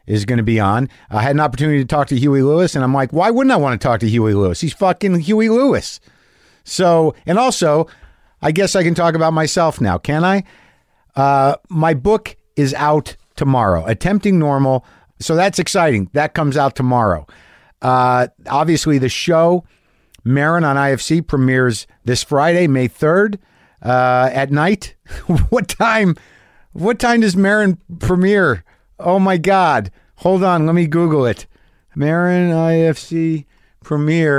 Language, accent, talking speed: English, American, 160 wpm